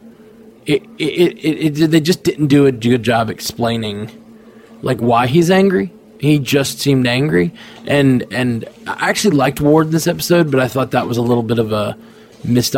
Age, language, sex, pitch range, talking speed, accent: 20-39, English, male, 120-170 Hz, 190 wpm, American